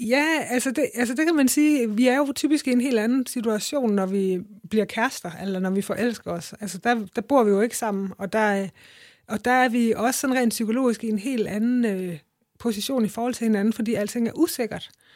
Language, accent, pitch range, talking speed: Danish, native, 200-245 Hz, 220 wpm